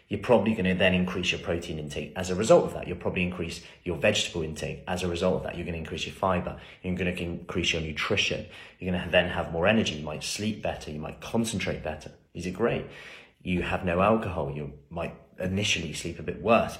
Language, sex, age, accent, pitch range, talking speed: English, male, 30-49, British, 85-105 Hz, 220 wpm